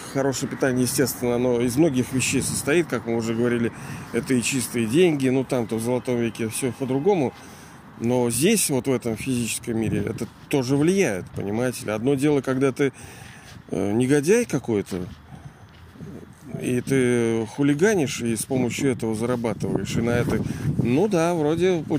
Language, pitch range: Russian, 120-155 Hz